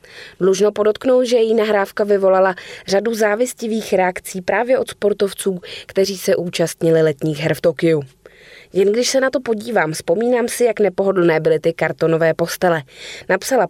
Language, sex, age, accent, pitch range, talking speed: Czech, female, 20-39, native, 170-220 Hz, 150 wpm